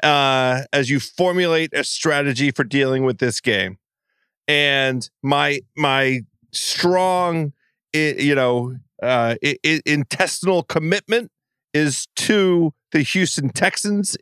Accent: American